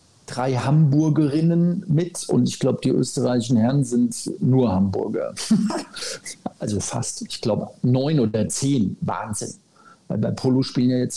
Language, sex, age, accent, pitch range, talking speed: German, male, 50-69, German, 120-155 Hz, 140 wpm